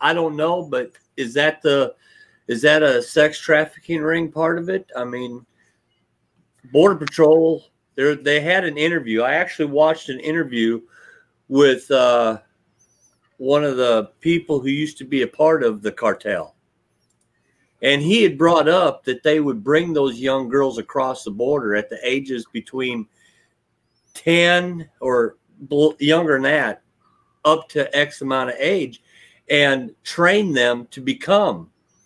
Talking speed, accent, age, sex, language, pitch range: 150 wpm, American, 50-69, male, English, 125-160 Hz